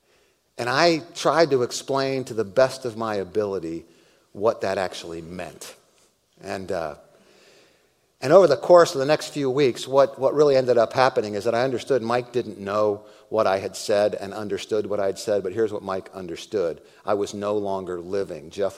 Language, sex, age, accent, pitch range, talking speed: English, male, 50-69, American, 105-170 Hz, 190 wpm